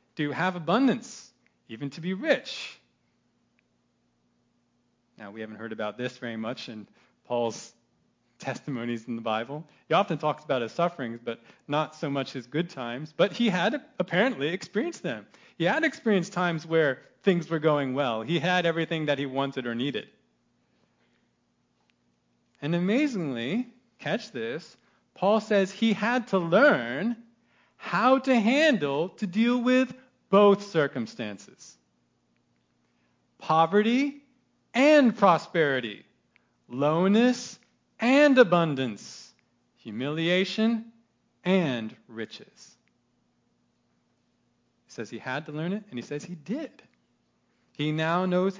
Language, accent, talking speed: English, American, 120 wpm